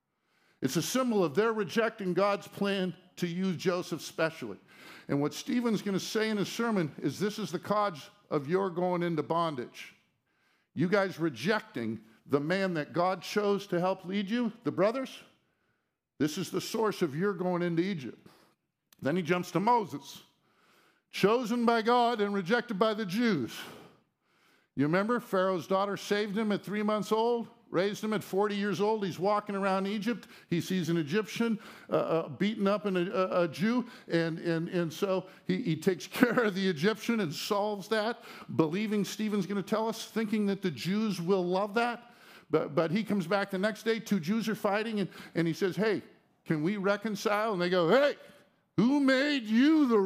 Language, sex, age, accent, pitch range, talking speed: English, male, 50-69, American, 180-225 Hz, 180 wpm